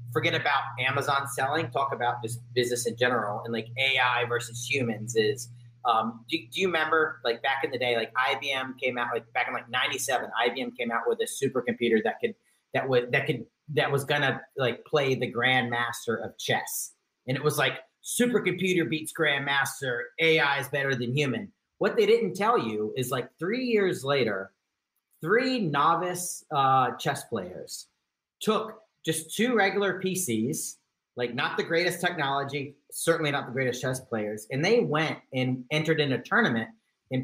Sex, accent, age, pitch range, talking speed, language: male, American, 40-59, 125-160 Hz, 175 wpm, English